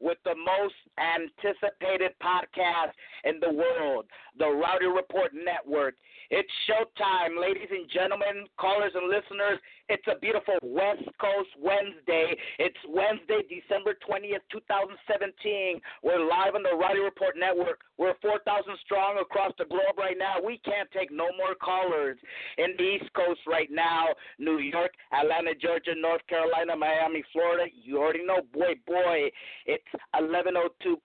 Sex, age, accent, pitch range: male, 40-59, American, 170-205 Hz